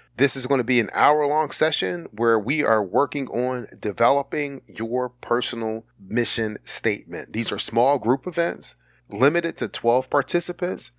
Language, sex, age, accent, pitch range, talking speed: English, male, 40-59, American, 100-125 Hz, 145 wpm